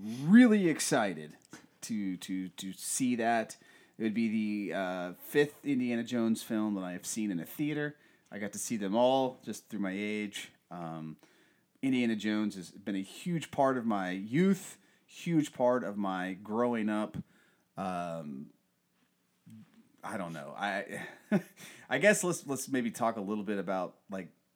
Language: English